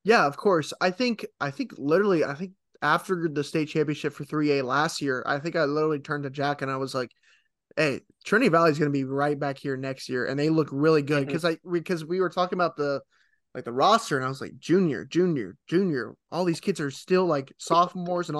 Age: 20-39